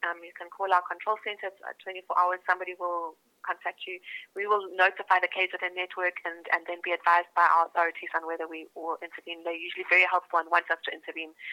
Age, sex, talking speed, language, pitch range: 30-49, female, 230 wpm, English, 170-205 Hz